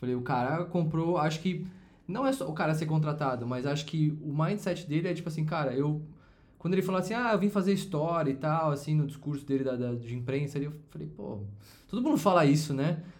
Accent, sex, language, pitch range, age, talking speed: Brazilian, male, Portuguese, 135-175 Hz, 20-39, 225 wpm